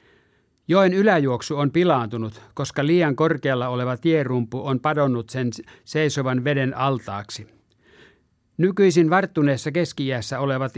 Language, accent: Finnish, native